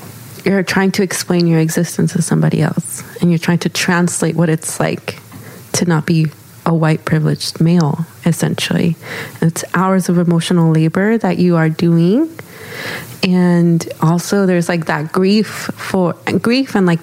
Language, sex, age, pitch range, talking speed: English, female, 20-39, 165-200 Hz, 155 wpm